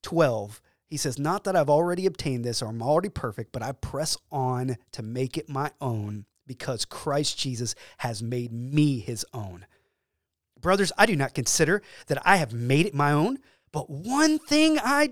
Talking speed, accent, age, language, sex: 185 wpm, American, 30-49, English, male